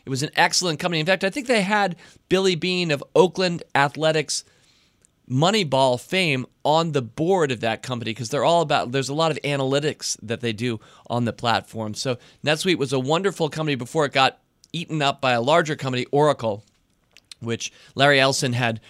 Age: 40-59